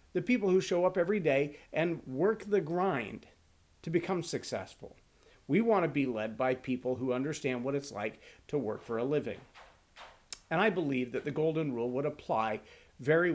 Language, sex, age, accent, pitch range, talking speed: English, male, 50-69, American, 125-165 Hz, 185 wpm